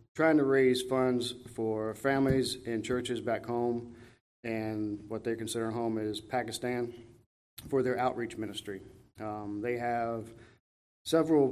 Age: 40-59